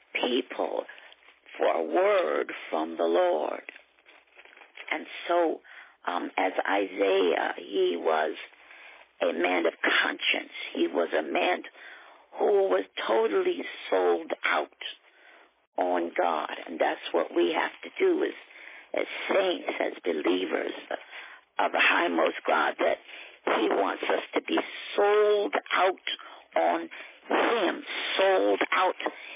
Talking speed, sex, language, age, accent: 120 wpm, female, English, 50-69, American